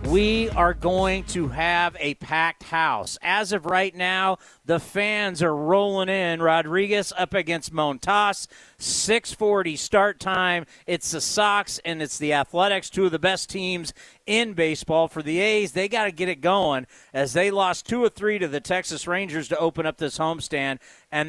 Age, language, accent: 40-59, English, American